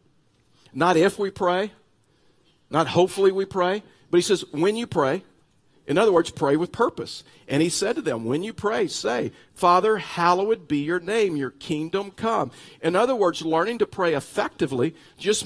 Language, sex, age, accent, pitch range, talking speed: English, male, 50-69, American, 145-190 Hz, 175 wpm